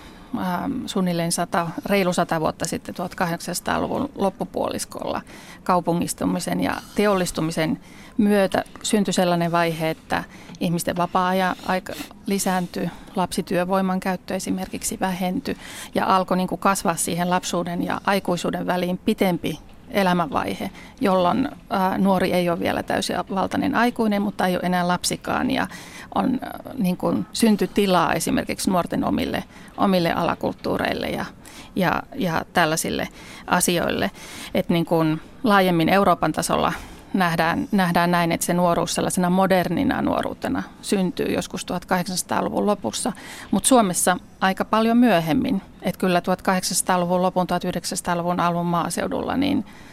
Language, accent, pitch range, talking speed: Finnish, native, 175-205 Hz, 110 wpm